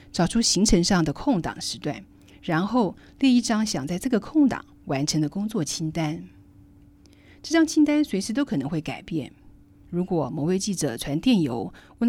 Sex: female